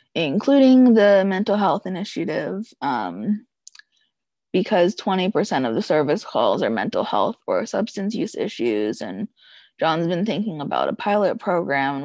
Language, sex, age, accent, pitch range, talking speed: English, female, 20-39, American, 190-245 Hz, 140 wpm